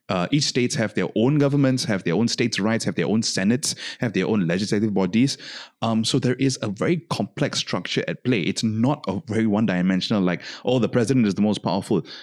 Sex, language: male, English